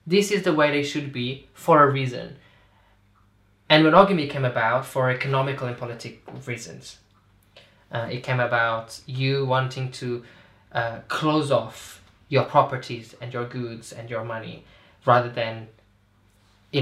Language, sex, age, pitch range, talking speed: English, male, 10-29, 115-150 Hz, 145 wpm